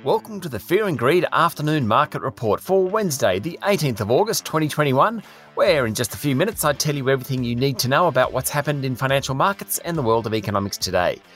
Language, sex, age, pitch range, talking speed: English, male, 30-49, 130-170 Hz, 225 wpm